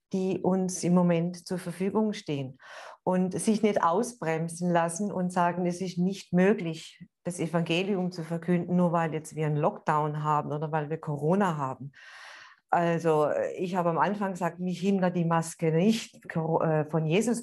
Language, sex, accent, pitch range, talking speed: German, female, German, 160-190 Hz, 160 wpm